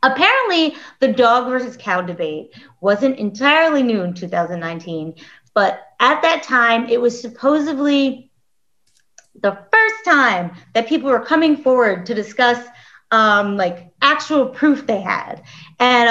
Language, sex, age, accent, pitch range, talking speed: English, female, 30-49, American, 200-300 Hz, 130 wpm